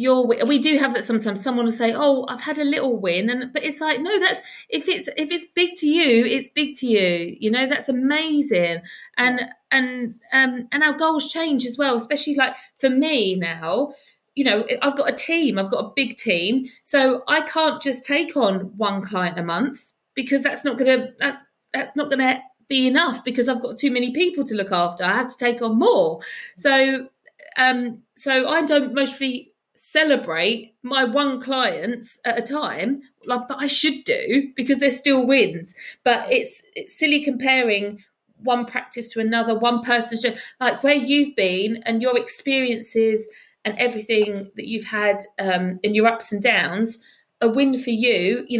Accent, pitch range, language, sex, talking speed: British, 225-280 Hz, English, female, 185 wpm